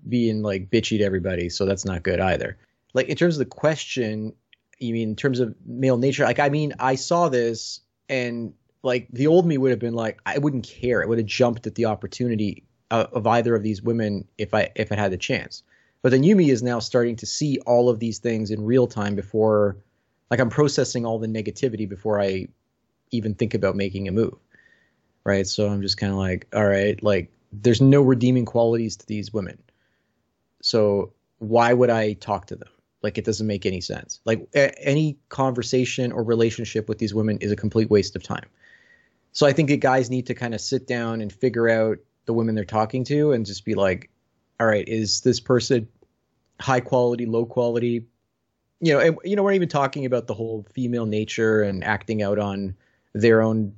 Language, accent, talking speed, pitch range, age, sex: English, American, 205 wpm, 105-125 Hz, 30-49, male